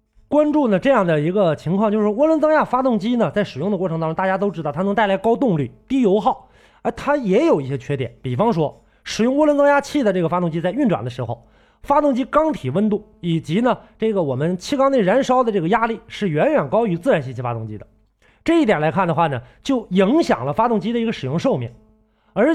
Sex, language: male, Chinese